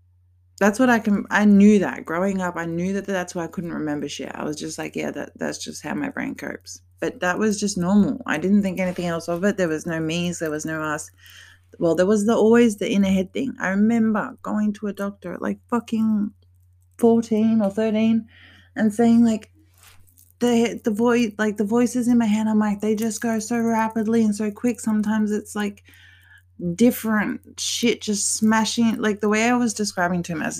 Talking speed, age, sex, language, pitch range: 215 wpm, 20-39, female, English, 150-225 Hz